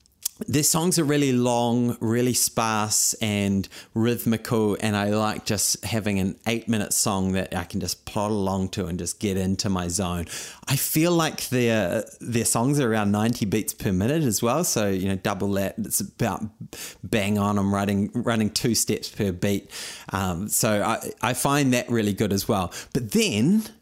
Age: 30-49